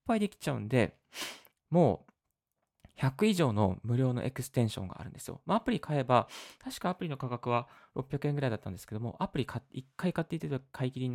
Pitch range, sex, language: 110-145 Hz, male, Japanese